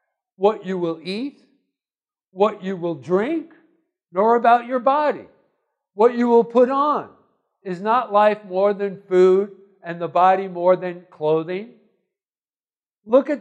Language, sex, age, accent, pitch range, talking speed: English, male, 60-79, American, 155-205 Hz, 140 wpm